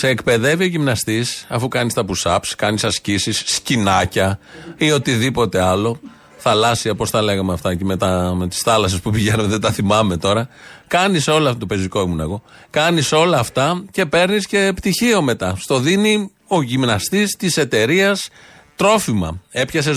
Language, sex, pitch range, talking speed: Greek, male, 110-155 Hz, 160 wpm